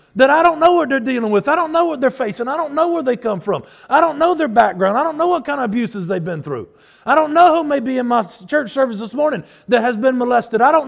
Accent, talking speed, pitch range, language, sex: American, 300 wpm, 190-310 Hz, English, male